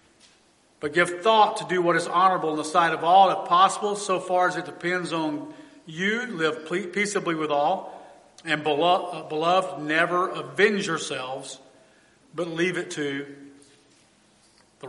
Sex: male